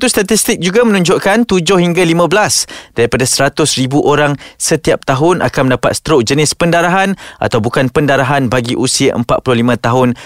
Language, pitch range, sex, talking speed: Malay, 125-170 Hz, male, 135 wpm